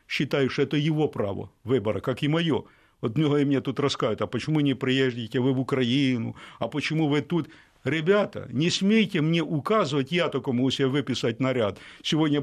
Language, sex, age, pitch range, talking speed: Russian, male, 60-79, 130-165 Hz, 180 wpm